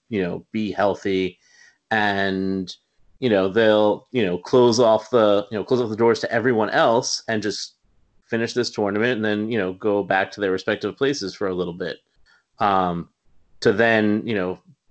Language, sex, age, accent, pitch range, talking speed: English, male, 30-49, American, 95-115 Hz, 185 wpm